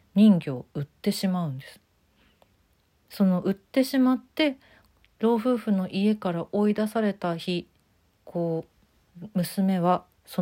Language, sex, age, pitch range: Japanese, female, 40-59, 140-185 Hz